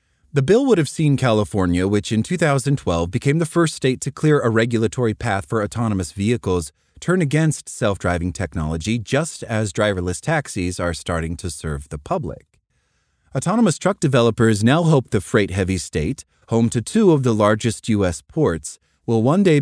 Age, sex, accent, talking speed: 30-49, male, American, 165 wpm